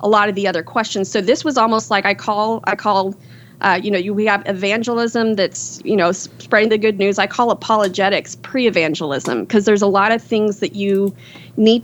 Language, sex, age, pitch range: English, female, 30-49, 190-220 Hz